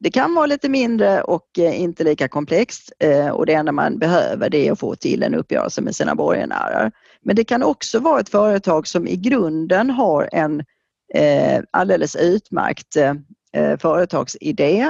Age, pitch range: 40-59, 155-215 Hz